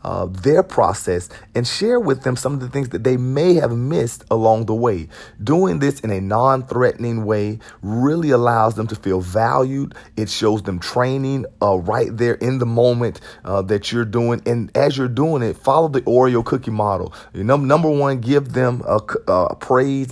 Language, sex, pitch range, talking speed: English, male, 105-130 Hz, 190 wpm